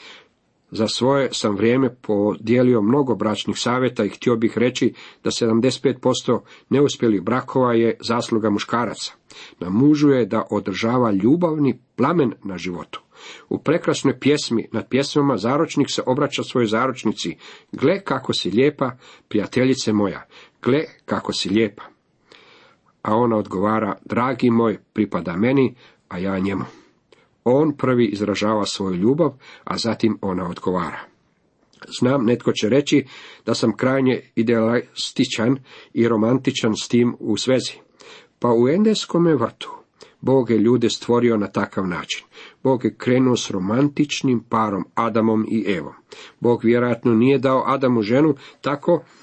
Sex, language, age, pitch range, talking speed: male, Croatian, 50-69, 110-135 Hz, 130 wpm